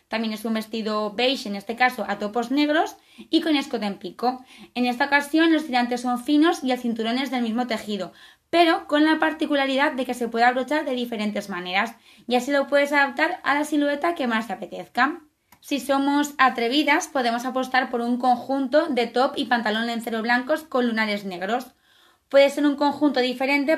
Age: 20-39